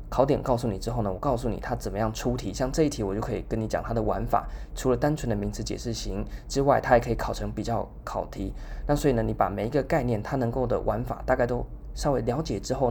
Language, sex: Chinese, male